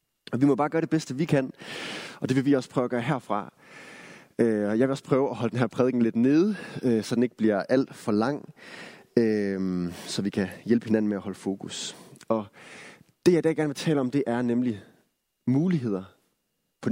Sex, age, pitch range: male, 30-49, 110-155 Hz